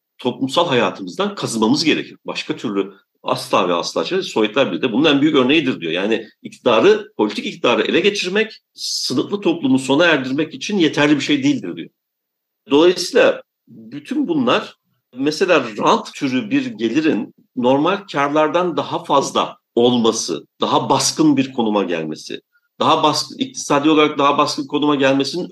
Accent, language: native, Turkish